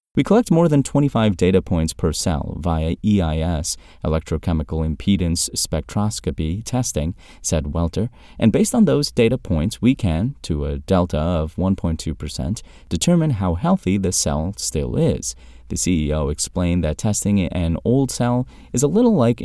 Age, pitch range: 30-49, 85-120 Hz